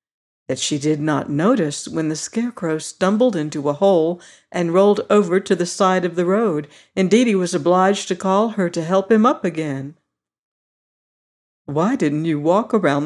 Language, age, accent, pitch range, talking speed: English, 60-79, American, 150-210 Hz, 175 wpm